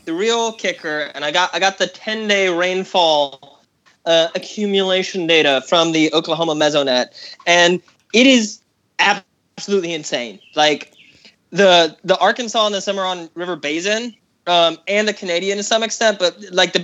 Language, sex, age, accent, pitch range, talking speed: English, male, 20-39, American, 155-195 Hz, 155 wpm